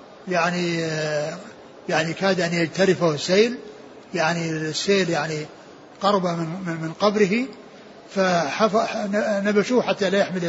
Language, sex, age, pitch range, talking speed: Arabic, male, 60-79, 185-230 Hz, 95 wpm